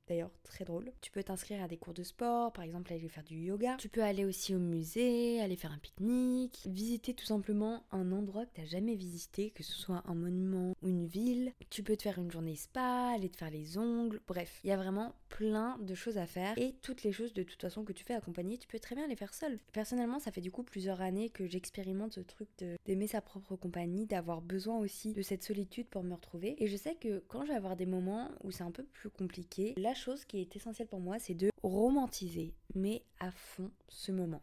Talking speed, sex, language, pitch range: 245 wpm, female, French, 185-230 Hz